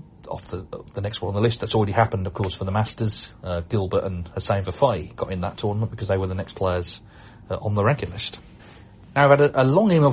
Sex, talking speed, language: male, 255 wpm, English